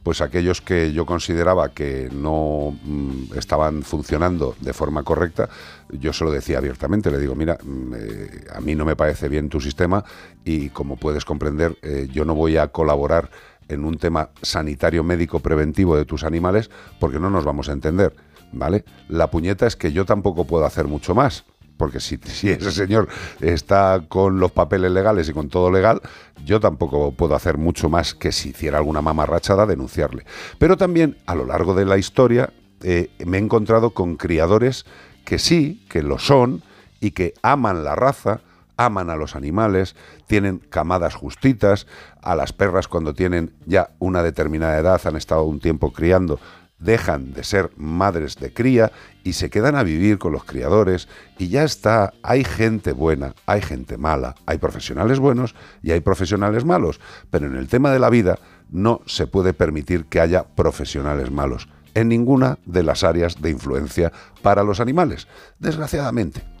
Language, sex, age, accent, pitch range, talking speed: Spanish, male, 50-69, Spanish, 75-100 Hz, 170 wpm